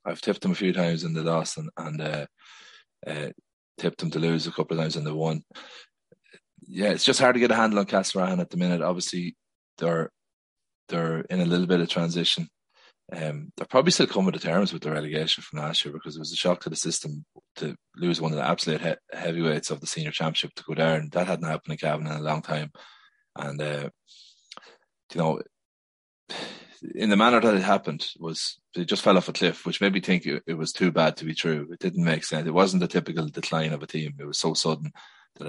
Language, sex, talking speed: English, male, 230 wpm